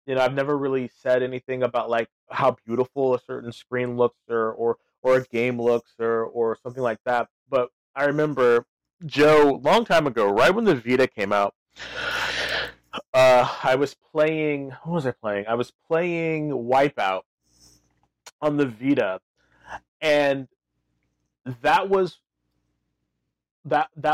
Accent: American